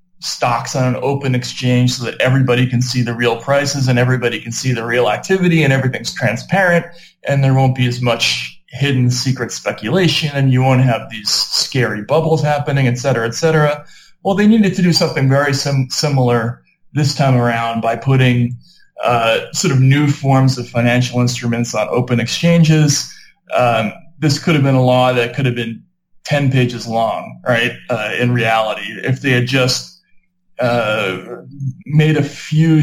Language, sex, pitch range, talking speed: English, male, 120-145 Hz, 170 wpm